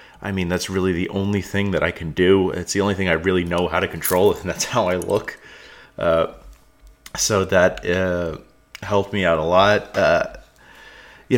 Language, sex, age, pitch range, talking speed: English, male, 30-49, 85-100 Hz, 195 wpm